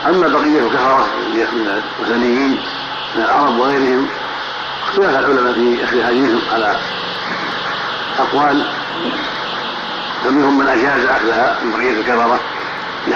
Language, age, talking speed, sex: Arabic, 60-79, 105 wpm, male